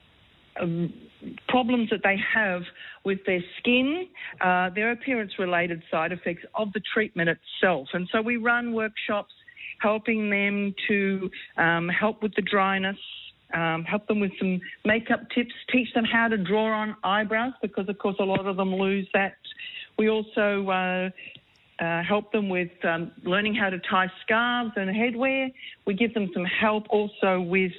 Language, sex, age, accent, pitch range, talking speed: English, female, 50-69, Australian, 180-220 Hz, 160 wpm